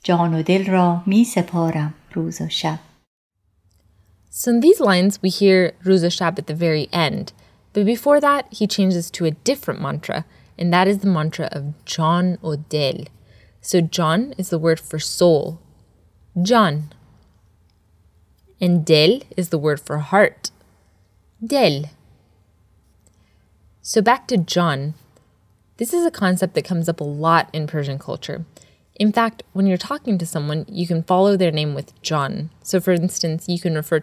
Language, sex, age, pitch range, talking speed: English, female, 20-39, 125-185 Hz, 155 wpm